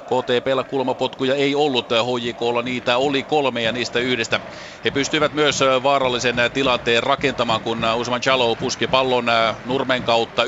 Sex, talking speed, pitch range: male, 140 wpm, 115-135 Hz